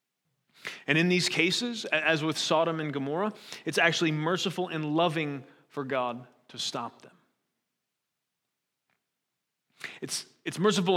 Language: English